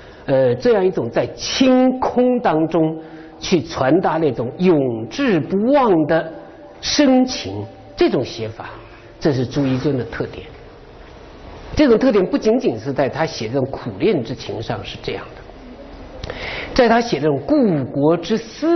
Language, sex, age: Chinese, male, 50-69